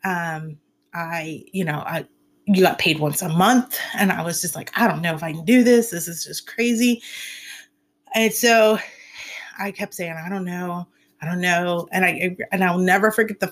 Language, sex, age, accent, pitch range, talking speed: English, female, 30-49, American, 175-230 Hz, 205 wpm